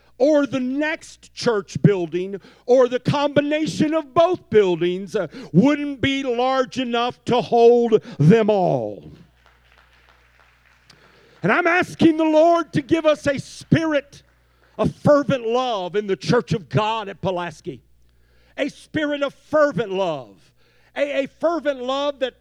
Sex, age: male, 50-69